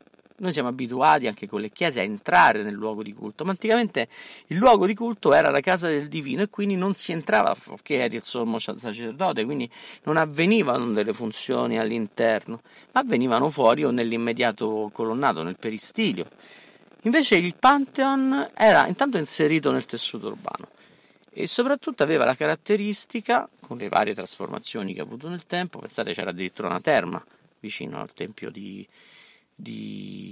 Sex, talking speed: male, 160 wpm